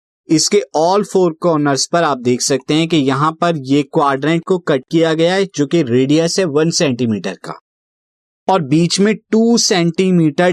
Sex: male